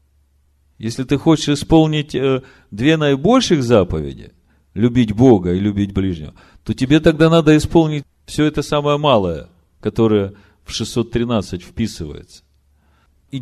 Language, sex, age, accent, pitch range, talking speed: Russian, male, 40-59, native, 80-130 Hz, 120 wpm